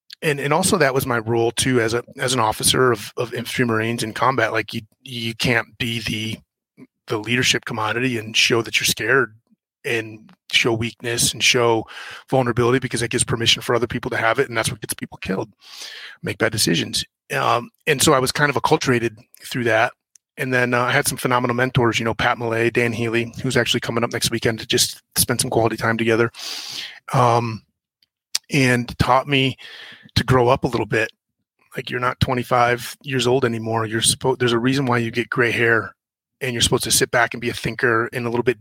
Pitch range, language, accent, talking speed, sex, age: 115-130 Hz, English, American, 210 wpm, male, 30-49